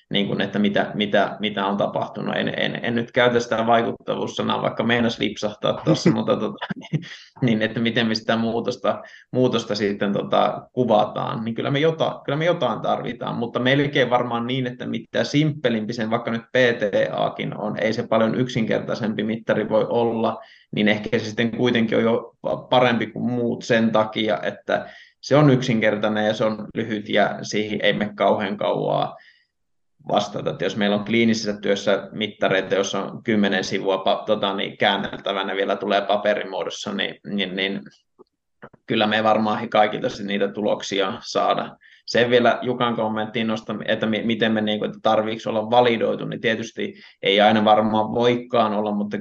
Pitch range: 105-120 Hz